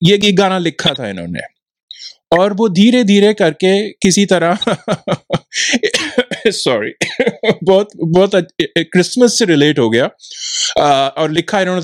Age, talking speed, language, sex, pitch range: 20-39, 120 wpm, Hindi, male, 145-195 Hz